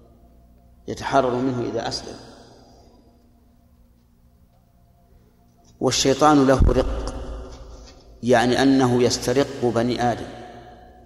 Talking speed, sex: 65 wpm, male